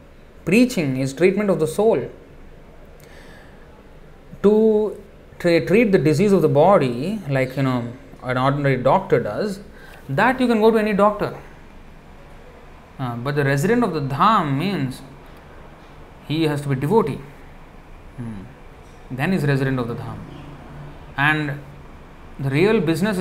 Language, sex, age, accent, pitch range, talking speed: English, male, 30-49, Indian, 125-185 Hz, 140 wpm